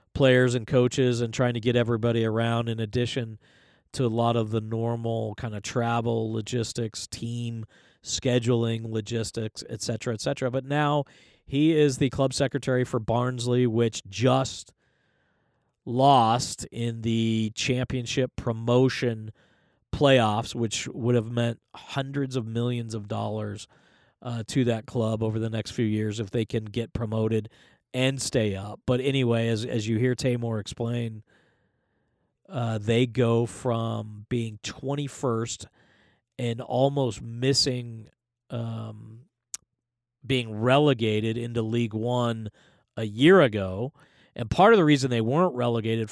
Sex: male